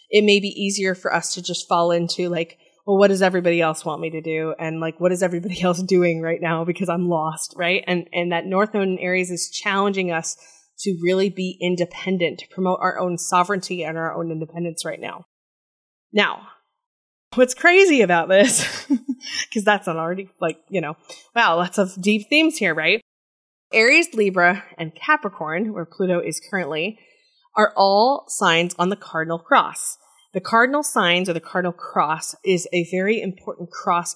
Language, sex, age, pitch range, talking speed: English, female, 20-39, 170-200 Hz, 185 wpm